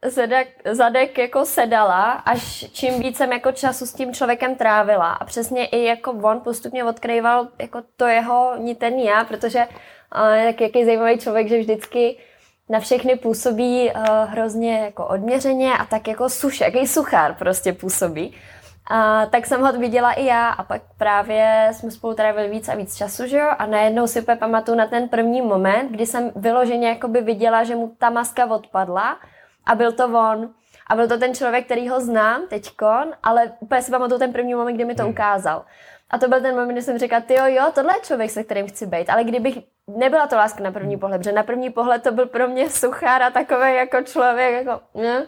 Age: 20-39